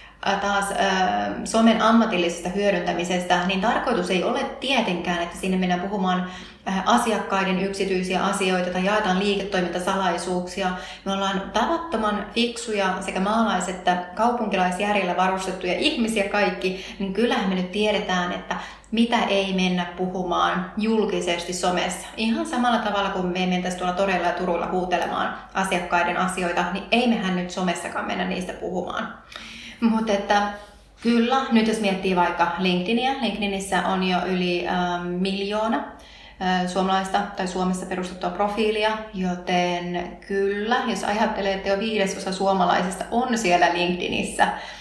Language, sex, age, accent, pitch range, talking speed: Finnish, female, 30-49, native, 180-210 Hz, 125 wpm